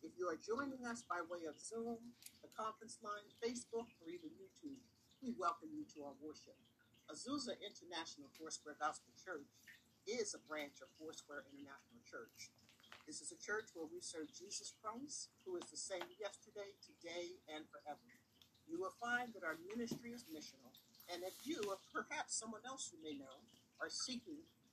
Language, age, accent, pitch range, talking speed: English, 50-69, American, 160-260 Hz, 170 wpm